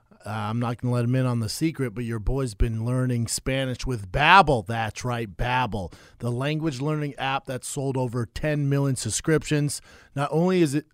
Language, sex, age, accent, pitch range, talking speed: English, male, 40-59, American, 125-150 Hz, 190 wpm